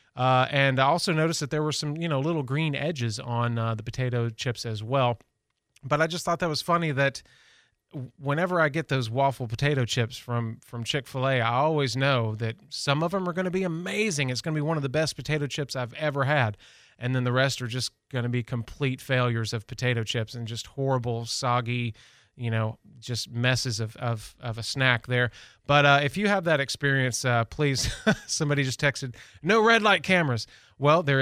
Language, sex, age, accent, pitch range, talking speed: English, male, 30-49, American, 120-150 Hz, 215 wpm